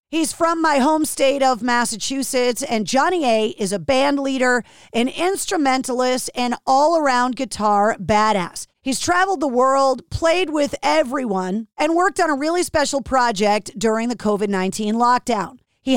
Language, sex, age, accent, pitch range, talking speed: English, female, 40-59, American, 225-305 Hz, 145 wpm